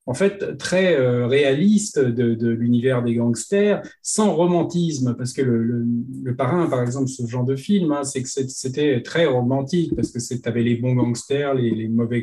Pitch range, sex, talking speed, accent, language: 115-155 Hz, male, 195 wpm, French, French